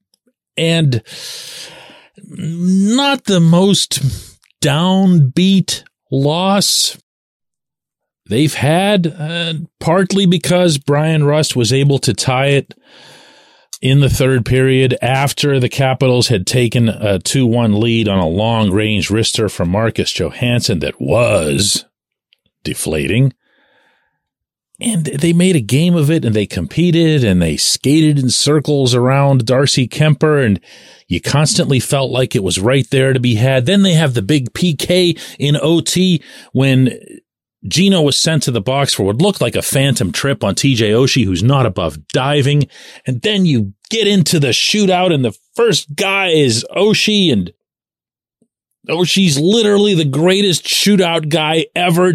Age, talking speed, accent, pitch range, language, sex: 40-59, 140 wpm, American, 125-175 Hz, English, male